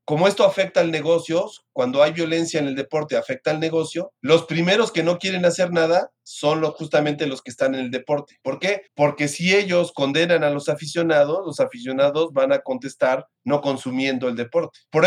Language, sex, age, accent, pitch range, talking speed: Spanish, male, 40-59, Mexican, 140-170 Hz, 190 wpm